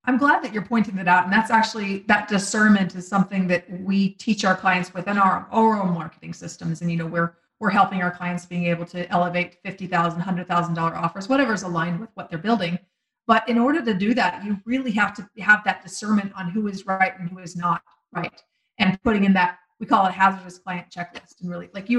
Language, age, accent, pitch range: English, 30-49, American, 185-235 Hz